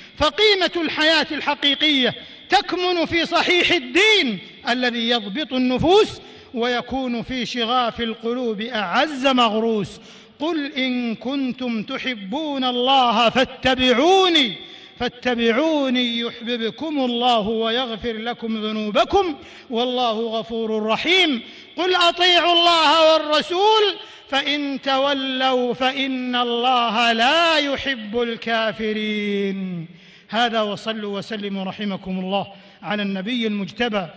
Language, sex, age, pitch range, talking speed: Arabic, male, 50-69, 215-270 Hz, 90 wpm